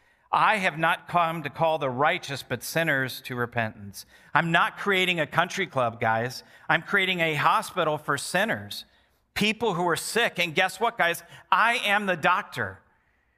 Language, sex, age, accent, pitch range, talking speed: English, male, 50-69, American, 140-195 Hz, 165 wpm